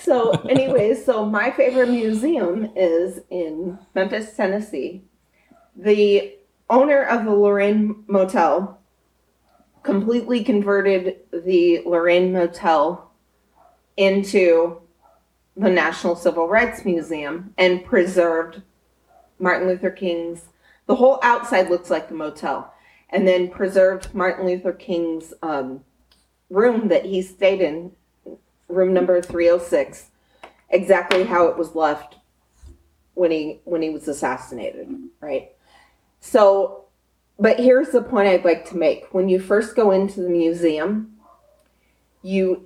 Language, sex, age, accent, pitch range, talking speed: English, female, 30-49, American, 170-215 Hz, 115 wpm